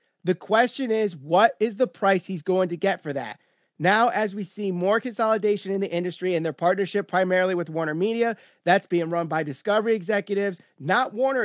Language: English